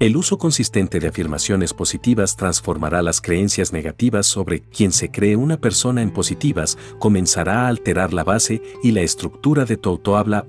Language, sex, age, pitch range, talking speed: Spanish, male, 50-69, 85-115 Hz, 165 wpm